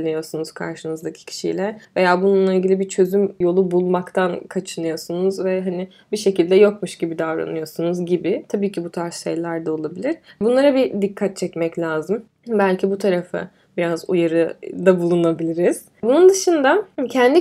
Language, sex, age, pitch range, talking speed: Turkish, female, 10-29, 180-205 Hz, 135 wpm